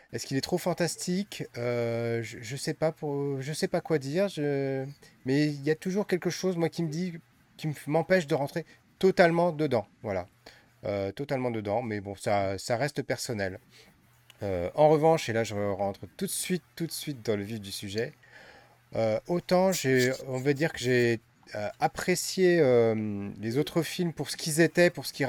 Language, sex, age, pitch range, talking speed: French, male, 30-49, 115-155 Hz, 190 wpm